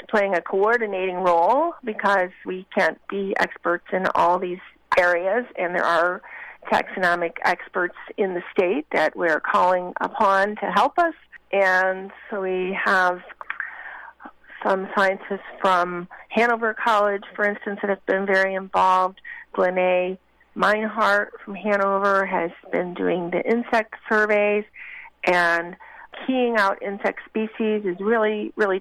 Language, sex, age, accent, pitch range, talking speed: English, female, 40-59, American, 185-225 Hz, 130 wpm